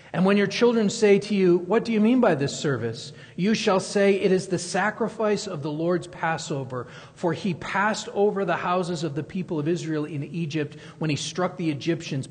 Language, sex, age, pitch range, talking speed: English, male, 40-59, 145-185 Hz, 210 wpm